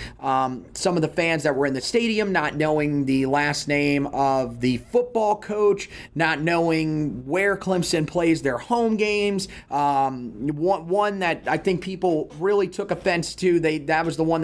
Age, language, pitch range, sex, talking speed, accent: 30-49, English, 145-180 Hz, male, 175 wpm, American